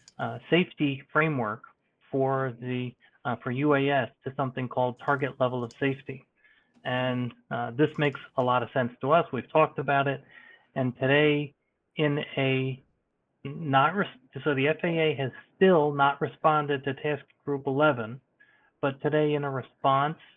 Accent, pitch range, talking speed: American, 125-145 Hz, 150 wpm